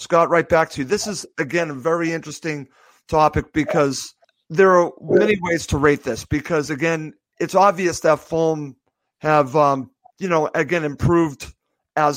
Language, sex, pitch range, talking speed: English, male, 150-180 Hz, 165 wpm